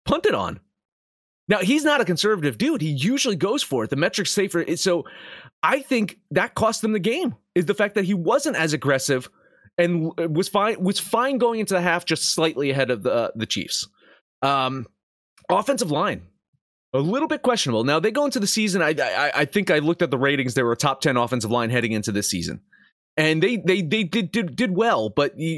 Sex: male